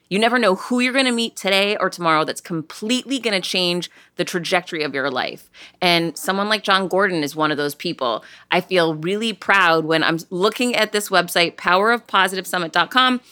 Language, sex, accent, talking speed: English, female, American, 190 wpm